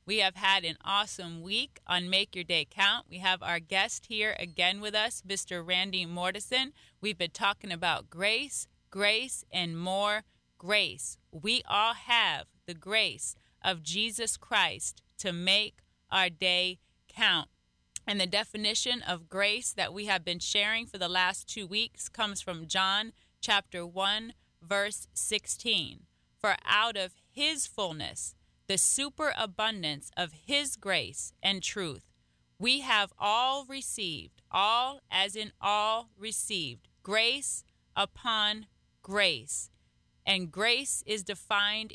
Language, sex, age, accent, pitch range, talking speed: English, female, 30-49, American, 180-220 Hz, 135 wpm